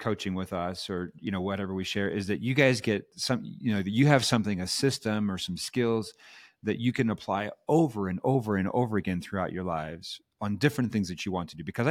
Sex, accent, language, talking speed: male, American, English, 235 wpm